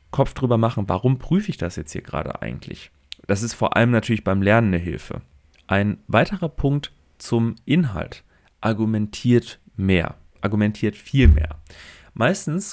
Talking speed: 145 wpm